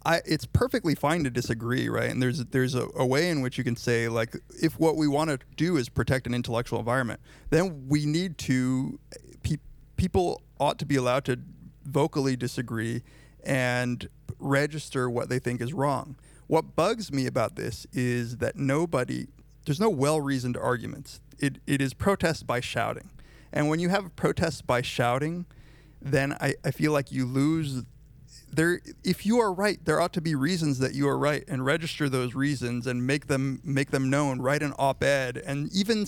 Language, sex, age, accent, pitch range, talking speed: English, male, 30-49, American, 125-150 Hz, 185 wpm